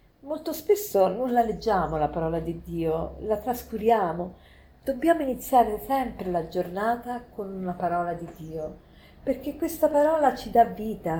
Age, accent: 50-69, native